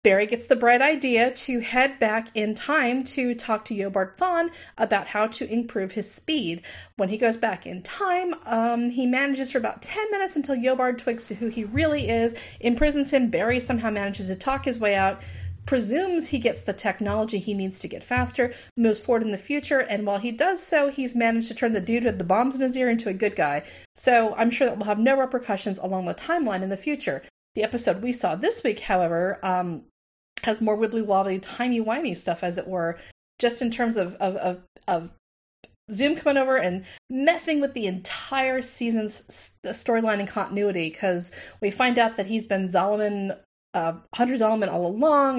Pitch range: 195-255 Hz